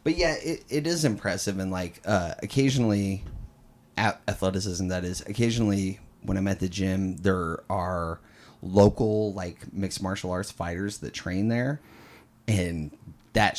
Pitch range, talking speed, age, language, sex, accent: 95-115 Hz, 140 wpm, 30-49, English, male, American